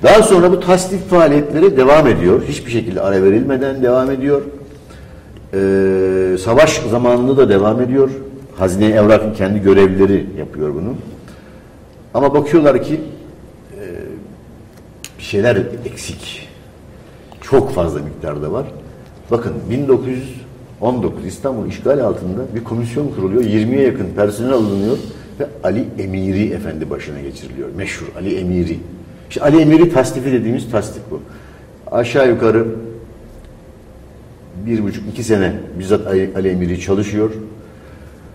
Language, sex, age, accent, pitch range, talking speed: Turkish, male, 60-79, native, 90-120 Hz, 115 wpm